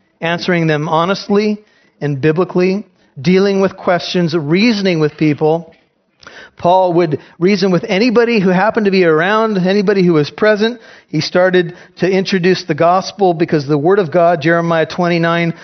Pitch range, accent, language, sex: 155-195 Hz, American, English, male